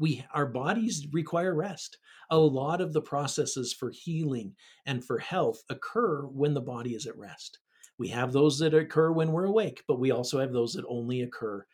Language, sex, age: English, male, 50-69